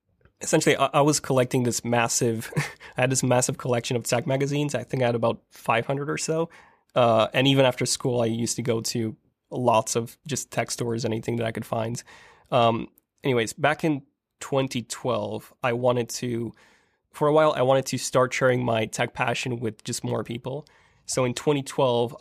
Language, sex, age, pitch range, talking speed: English, male, 20-39, 115-130 Hz, 185 wpm